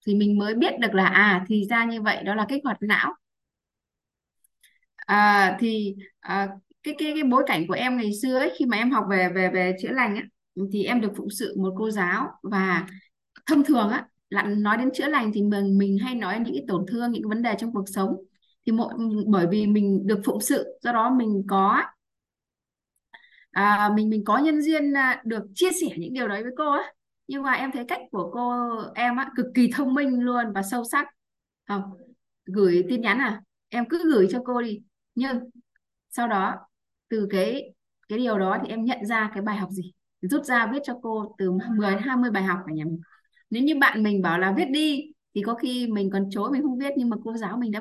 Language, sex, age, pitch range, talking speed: Vietnamese, female, 20-39, 195-250 Hz, 225 wpm